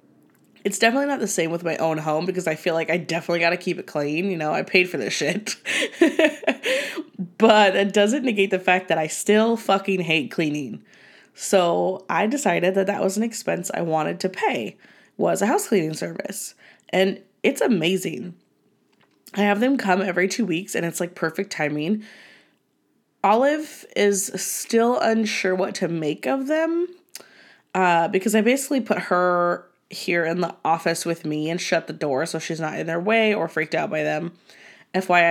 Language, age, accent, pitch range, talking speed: English, 20-39, American, 165-210 Hz, 185 wpm